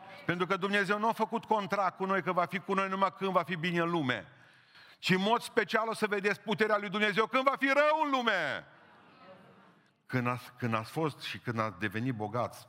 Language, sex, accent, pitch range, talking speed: Romanian, male, native, 105-155 Hz, 220 wpm